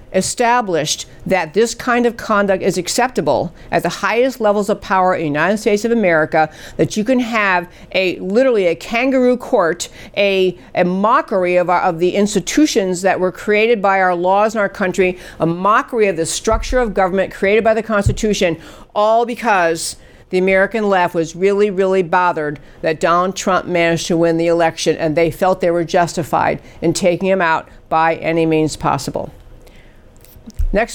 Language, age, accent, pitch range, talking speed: English, 50-69, American, 180-230 Hz, 170 wpm